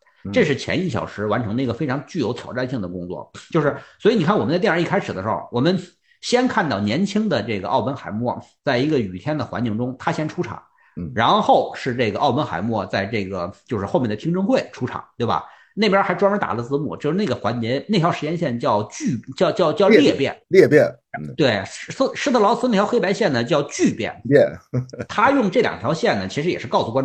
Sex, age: male, 50-69